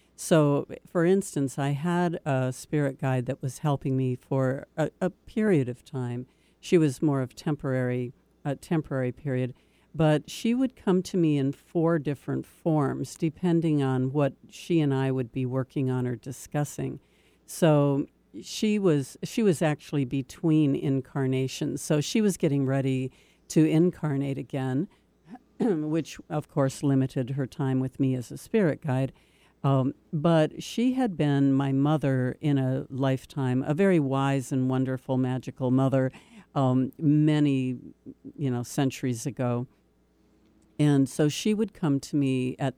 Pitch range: 130-160 Hz